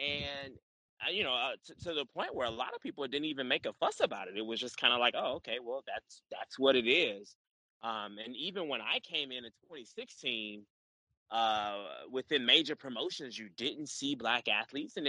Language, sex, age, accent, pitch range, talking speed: English, male, 20-39, American, 115-165 Hz, 210 wpm